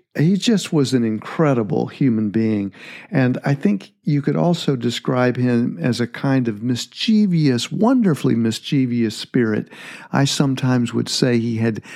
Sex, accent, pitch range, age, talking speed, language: male, American, 120-175 Hz, 50-69, 145 wpm, English